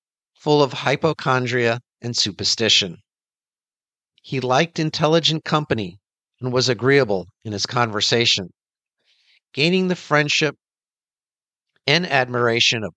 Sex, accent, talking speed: male, American, 95 wpm